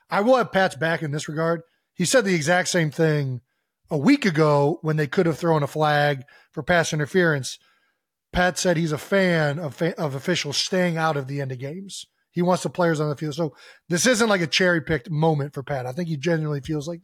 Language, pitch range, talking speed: English, 140-170 Hz, 230 wpm